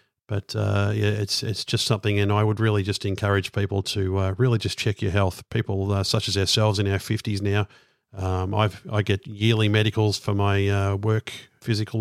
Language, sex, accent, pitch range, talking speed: English, male, Australian, 100-120 Hz, 205 wpm